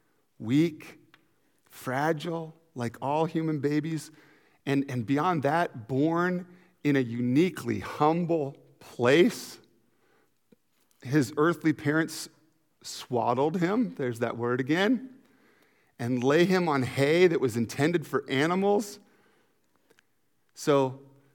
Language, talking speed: English, 100 wpm